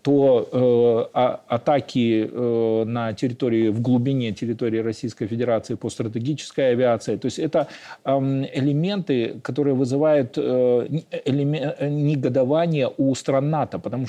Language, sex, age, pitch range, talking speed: Russian, male, 40-59, 120-150 Hz, 130 wpm